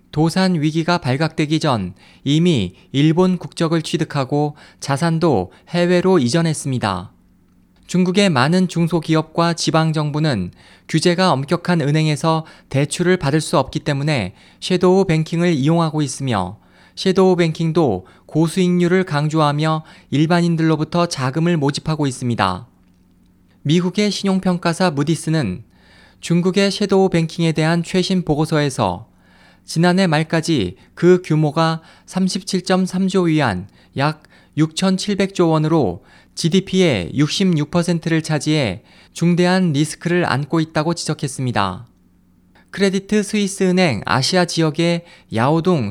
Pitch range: 140-175 Hz